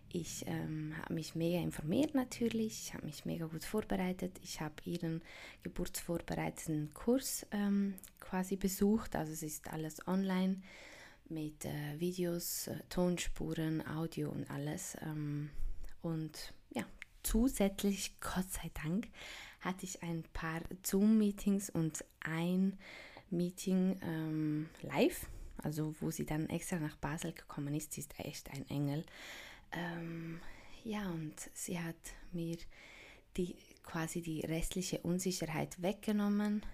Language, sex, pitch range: German, female, 155-185 Hz